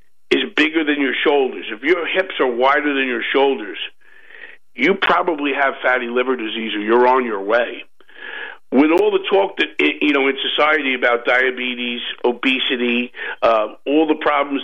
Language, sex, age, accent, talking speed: English, male, 50-69, American, 165 wpm